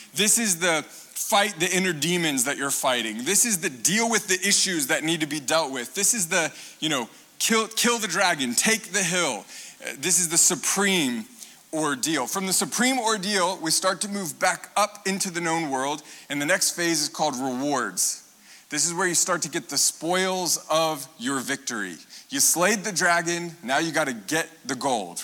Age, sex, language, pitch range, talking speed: 30-49, male, English, 150-195 Hz, 200 wpm